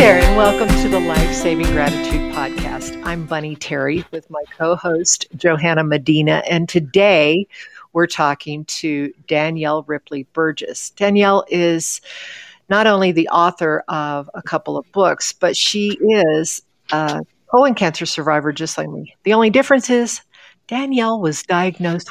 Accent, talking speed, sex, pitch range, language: American, 145 wpm, female, 150-195 Hz, English